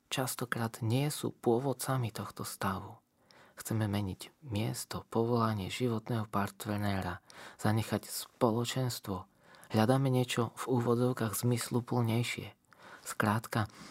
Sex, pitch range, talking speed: male, 105-130 Hz, 90 wpm